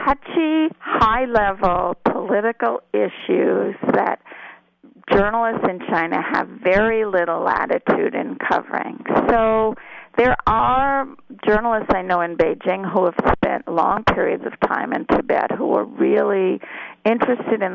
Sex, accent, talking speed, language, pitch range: female, American, 120 wpm, English, 185-250 Hz